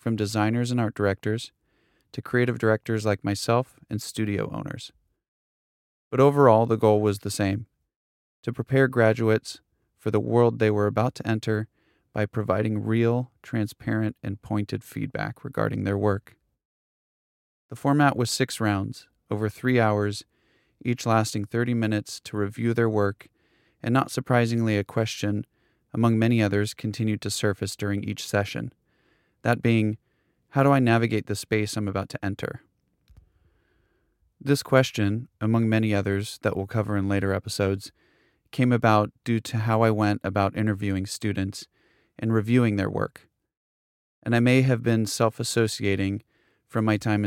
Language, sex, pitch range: English, male, 100-115 Hz